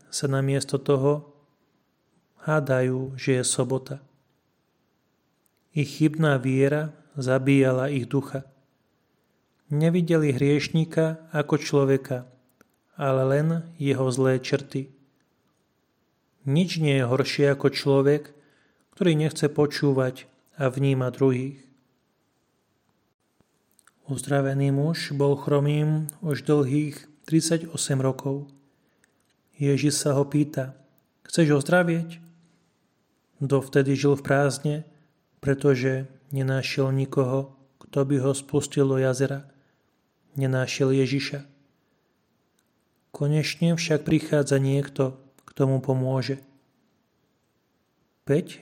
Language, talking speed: Slovak, 90 wpm